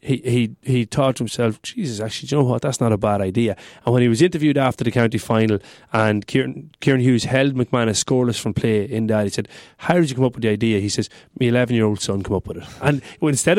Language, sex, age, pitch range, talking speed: English, male, 30-49, 115-140 Hz, 265 wpm